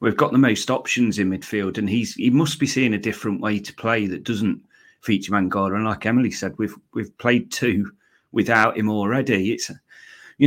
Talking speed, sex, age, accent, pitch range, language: 200 wpm, male, 30-49, British, 100-120 Hz, English